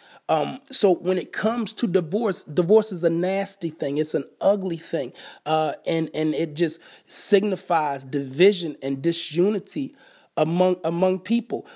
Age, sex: 30-49, male